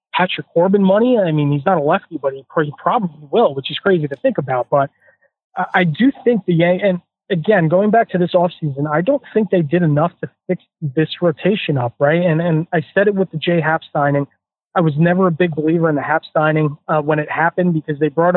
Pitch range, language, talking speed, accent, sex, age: 150-180 Hz, English, 230 wpm, American, male, 30-49